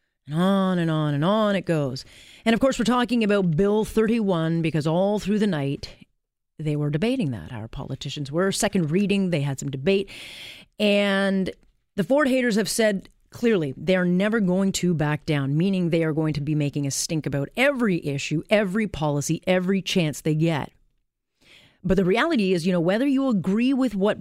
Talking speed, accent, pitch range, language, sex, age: 190 wpm, American, 155-200 Hz, English, female, 30-49